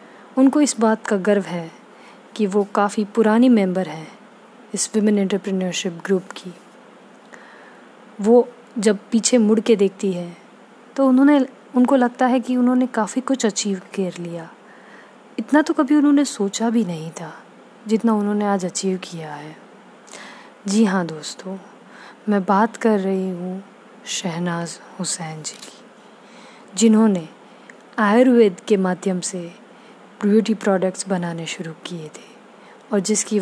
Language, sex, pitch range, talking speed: Hindi, female, 190-230 Hz, 135 wpm